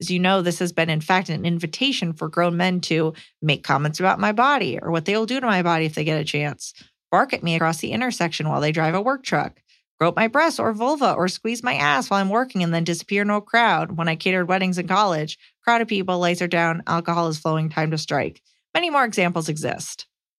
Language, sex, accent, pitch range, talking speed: English, female, American, 165-215 Hz, 245 wpm